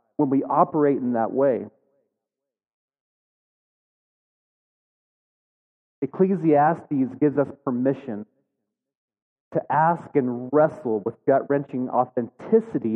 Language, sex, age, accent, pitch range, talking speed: English, male, 30-49, American, 125-150 Hz, 80 wpm